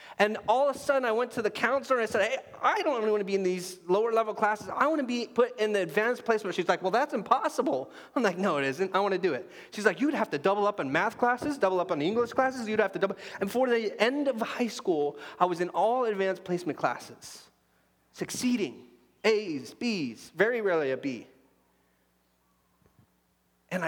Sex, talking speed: male, 225 wpm